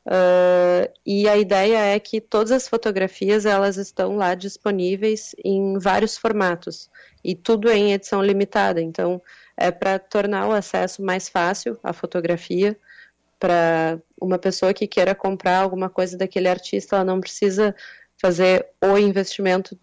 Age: 20-39